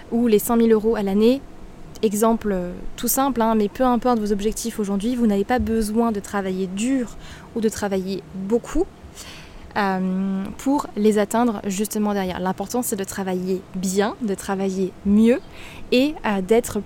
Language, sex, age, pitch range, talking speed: French, female, 20-39, 210-250 Hz, 160 wpm